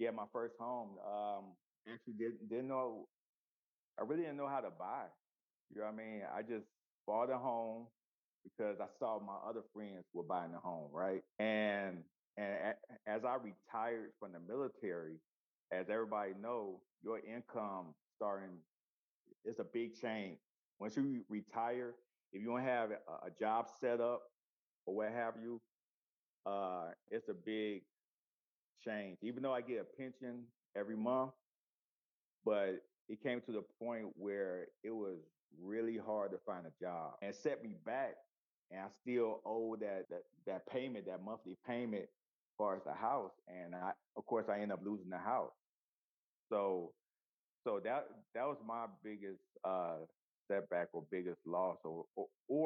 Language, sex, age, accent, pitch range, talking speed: English, male, 50-69, American, 100-120 Hz, 165 wpm